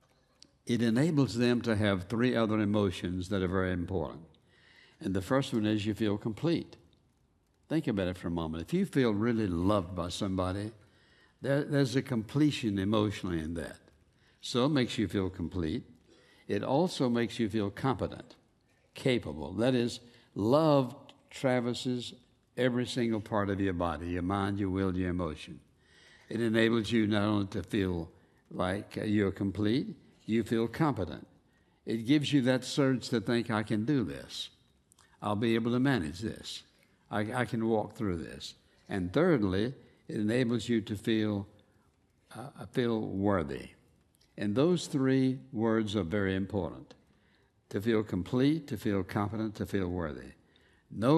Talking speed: 155 wpm